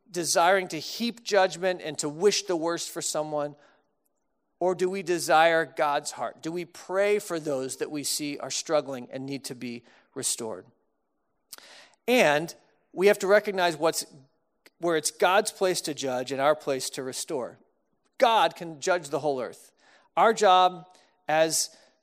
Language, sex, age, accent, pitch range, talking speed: English, male, 40-59, American, 150-205 Hz, 155 wpm